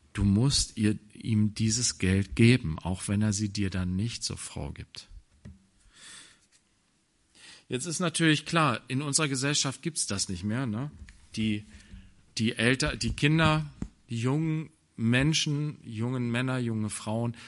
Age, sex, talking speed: 40-59, male, 145 wpm